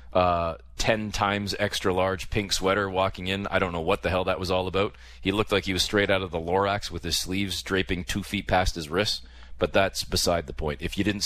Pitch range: 75-115 Hz